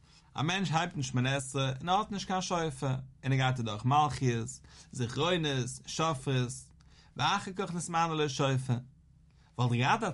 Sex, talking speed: male, 60 wpm